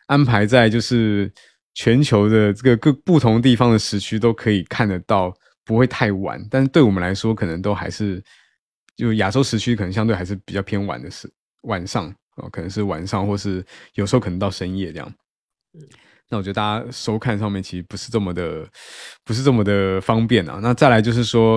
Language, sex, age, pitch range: Chinese, male, 20-39, 95-115 Hz